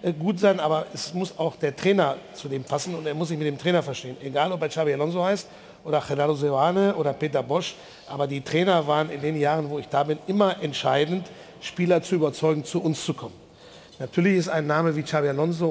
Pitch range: 155-180 Hz